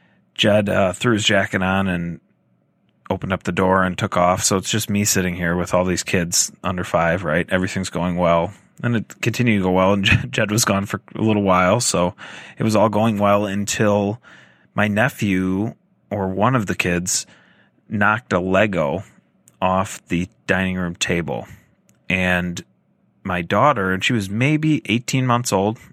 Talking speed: 175 wpm